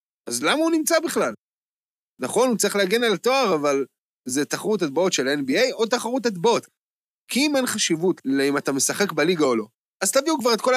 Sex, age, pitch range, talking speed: male, 20-39, 160-235 Hz, 195 wpm